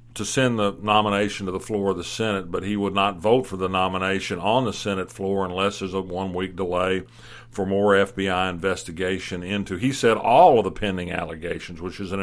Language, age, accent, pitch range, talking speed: English, 50-69, American, 95-105 Hz, 205 wpm